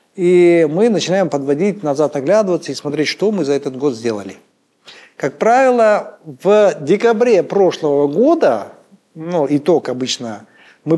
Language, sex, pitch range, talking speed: Russian, male, 145-190 Hz, 130 wpm